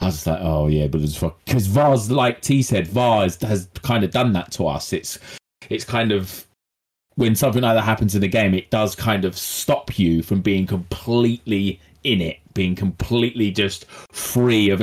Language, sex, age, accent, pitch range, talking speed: English, male, 30-49, British, 100-130 Hz, 195 wpm